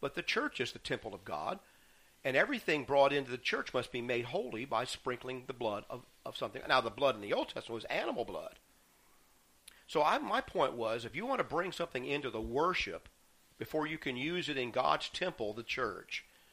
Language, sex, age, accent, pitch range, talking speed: English, male, 50-69, American, 120-160 Hz, 210 wpm